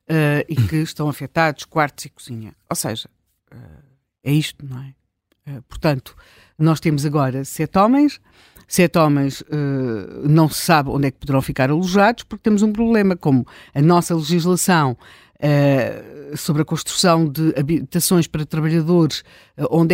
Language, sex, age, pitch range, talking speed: Portuguese, female, 50-69, 150-200 Hz, 145 wpm